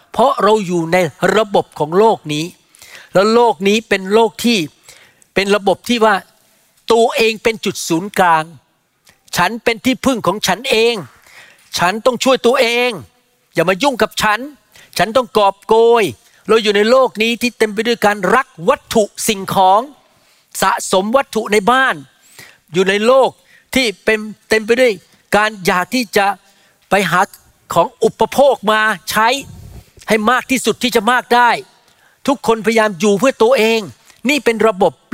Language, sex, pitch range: Thai, male, 175-225 Hz